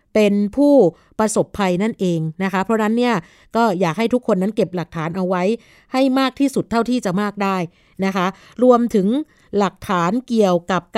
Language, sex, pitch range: Thai, female, 180-230 Hz